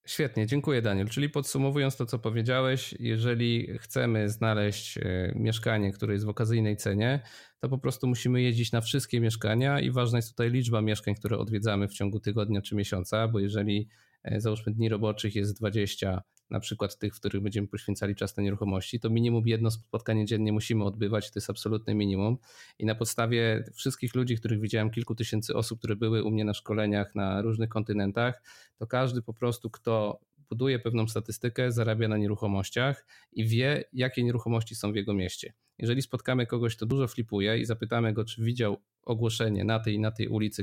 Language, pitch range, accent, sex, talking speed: Polish, 105-120 Hz, native, male, 180 wpm